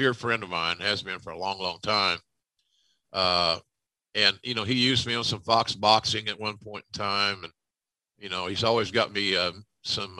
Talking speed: 210 wpm